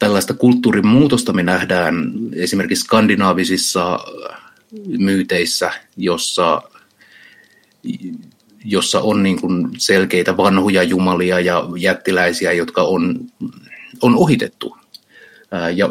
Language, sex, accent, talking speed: Finnish, male, native, 75 wpm